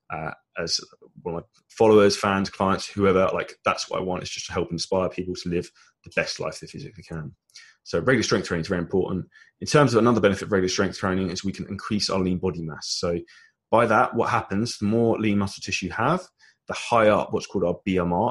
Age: 20-39